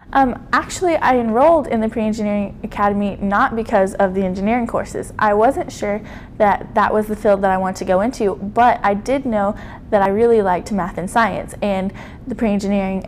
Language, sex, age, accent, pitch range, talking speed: English, female, 20-39, American, 190-225 Hz, 195 wpm